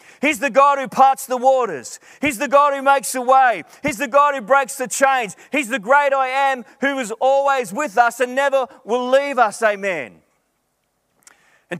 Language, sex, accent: English, male, Australian